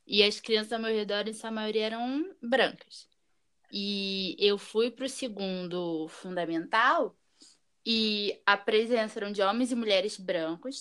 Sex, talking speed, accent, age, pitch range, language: female, 150 wpm, Brazilian, 10-29, 205-255 Hz, Portuguese